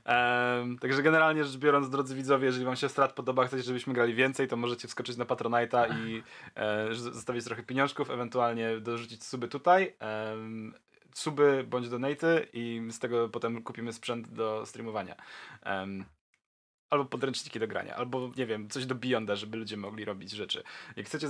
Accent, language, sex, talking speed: native, Polish, male, 170 wpm